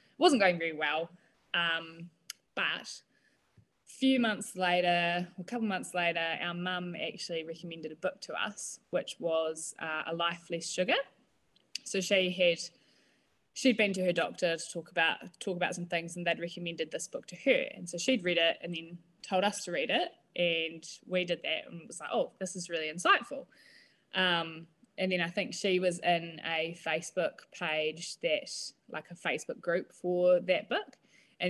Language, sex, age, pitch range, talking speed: English, female, 20-39, 165-190 Hz, 185 wpm